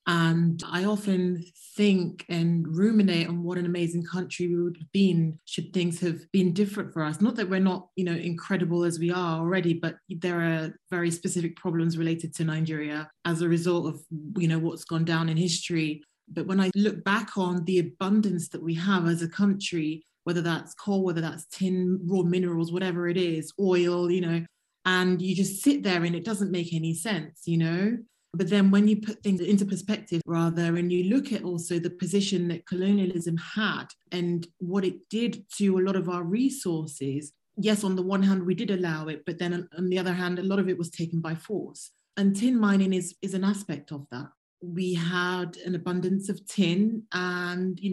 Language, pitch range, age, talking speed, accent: English, 170-190 Hz, 30-49, 205 wpm, British